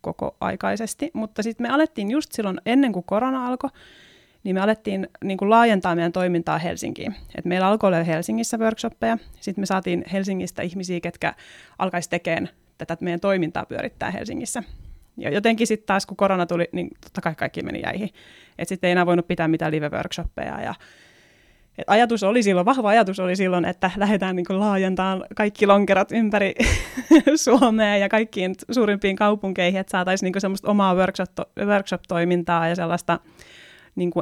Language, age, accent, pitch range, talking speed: Finnish, 30-49, native, 180-210 Hz, 160 wpm